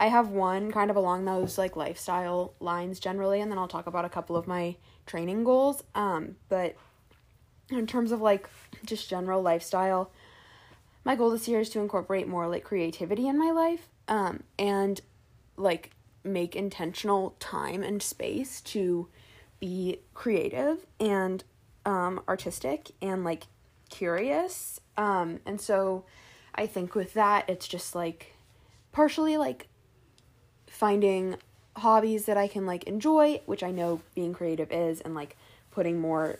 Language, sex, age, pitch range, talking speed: English, female, 20-39, 170-210 Hz, 150 wpm